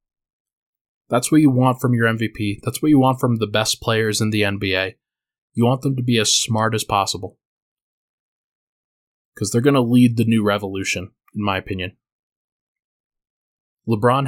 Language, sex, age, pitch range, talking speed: English, male, 20-39, 110-130 Hz, 165 wpm